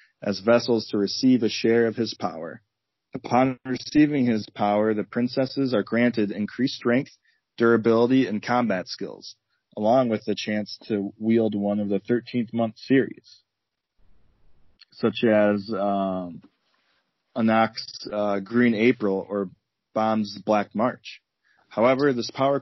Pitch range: 105-120 Hz